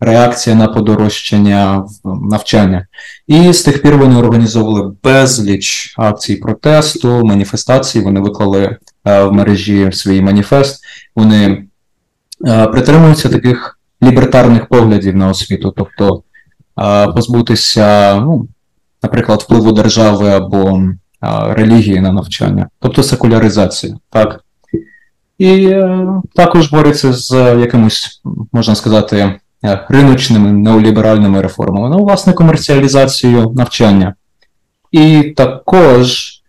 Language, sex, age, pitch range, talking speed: Ukrainian, male, 20-39, 105-130 Hz, 100 wpm